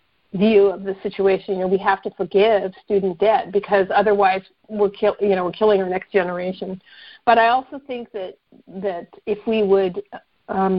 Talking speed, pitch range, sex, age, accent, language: 185 wpm, 190-235 Hz, female, 50-69, American, English